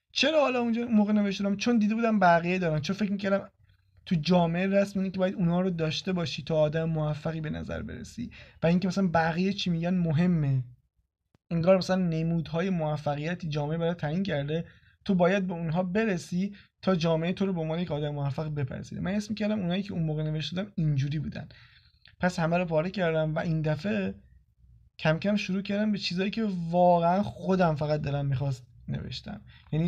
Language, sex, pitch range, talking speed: Persian, male, 150-185 Hz, 185 wpm